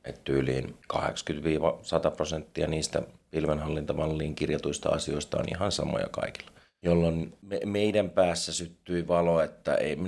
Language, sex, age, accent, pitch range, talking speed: Finnish, male, 30-49, native, 75-90 Hz, 120 wpm